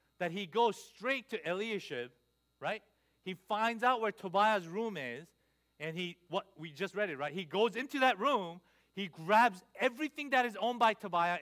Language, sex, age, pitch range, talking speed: English, male, 40-59, 155-220 Hz, 185 wpm